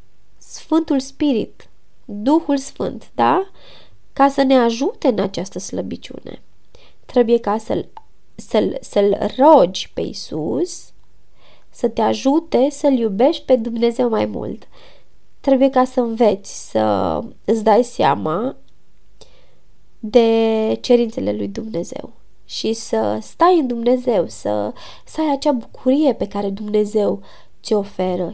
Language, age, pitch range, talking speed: Romanian, 20-39, 210-265 Hz, 115 wpm